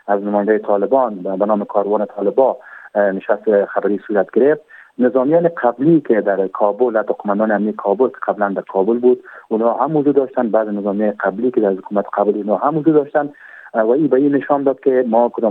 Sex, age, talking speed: male, 40-59, 190 wpm